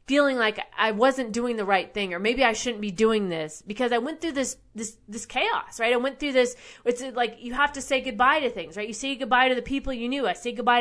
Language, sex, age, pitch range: English, female, 30-49, 215-265 Hz